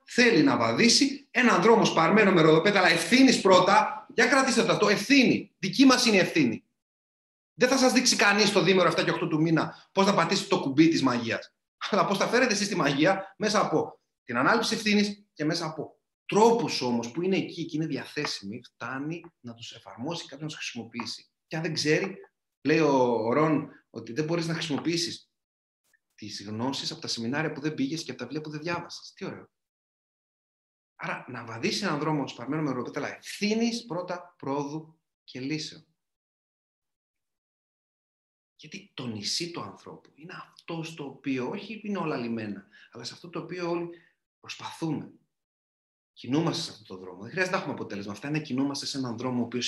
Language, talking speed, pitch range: Greek, 185 wpm, 120-190 Hz